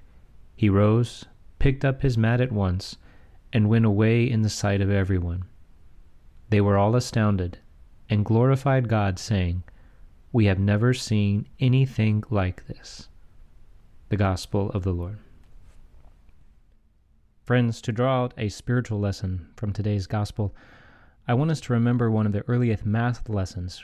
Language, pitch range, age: English, 95-120 Hz, 30-49